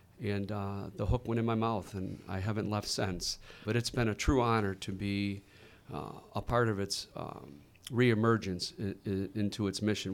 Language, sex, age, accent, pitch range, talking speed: English, male, 40-59, American, 100-115 Hz, 195 wpm